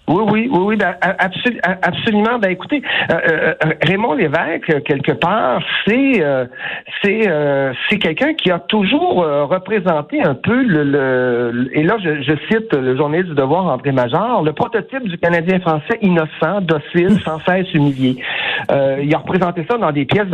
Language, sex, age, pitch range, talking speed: French, male, 60-79, 145-195 Hz, 170 wpm